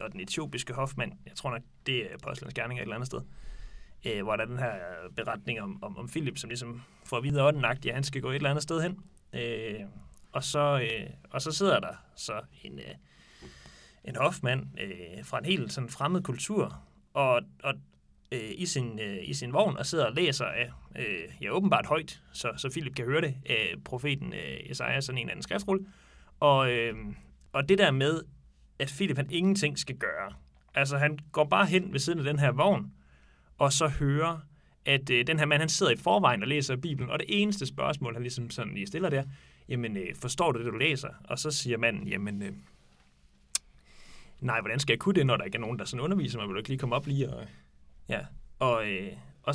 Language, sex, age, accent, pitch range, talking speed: Danish, male, 30-49, native, 115-160 Hz, 220 wpm